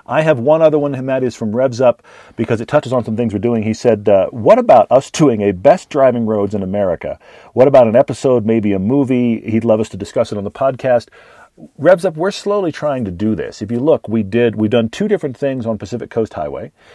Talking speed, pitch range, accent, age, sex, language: 250 wpm, 105-135 Hz, American, 40-59, male, English